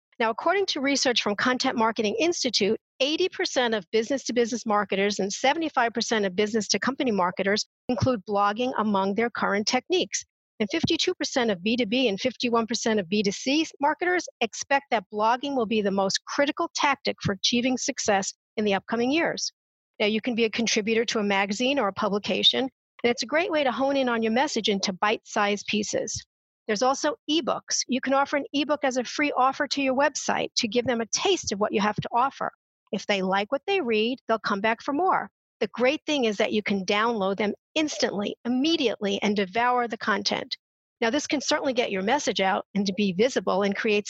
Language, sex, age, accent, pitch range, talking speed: English, female, 50-69, American, 215-280 Hz, 190 wpm